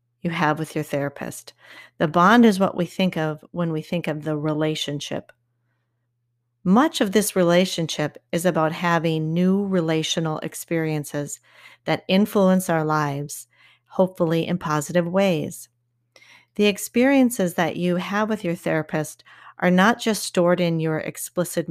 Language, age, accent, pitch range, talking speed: English, 40-59, American, 150-185 Hz, 140 wpm